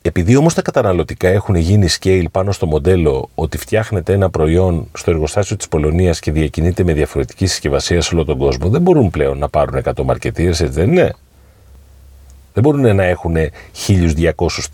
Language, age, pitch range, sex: Greek, 40-59, 75-95 Hz, male